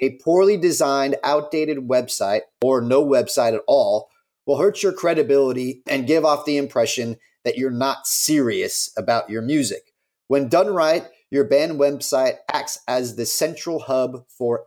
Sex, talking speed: male, 155 wpm